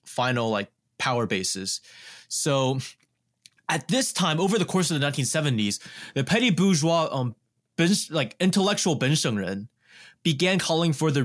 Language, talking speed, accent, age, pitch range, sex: English, 135 wpm, American, 20-39, 110-155 Hz, male